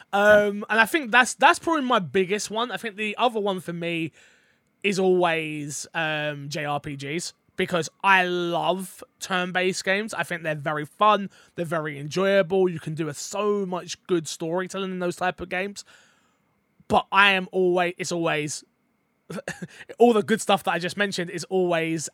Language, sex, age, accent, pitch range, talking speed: English, male, 20-39, British, 170-220 Hz, 170 wpm